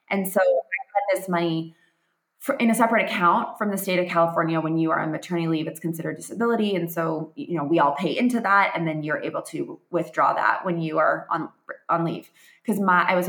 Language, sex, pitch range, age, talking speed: English, female, 165-200 Hz, 20-39, 225 wpm